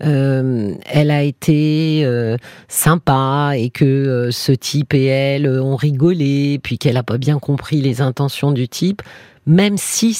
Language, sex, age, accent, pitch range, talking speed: French, female, 40-59, French, 120-175 Hz, 160 wpm